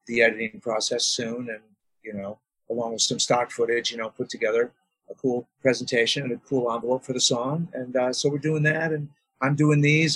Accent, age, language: American, 40-59, English